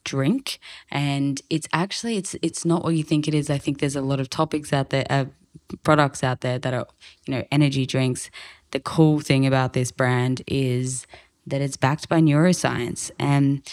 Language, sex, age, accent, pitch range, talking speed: English, female, 10-29, Australian, 130-155 Hz, 190 wpm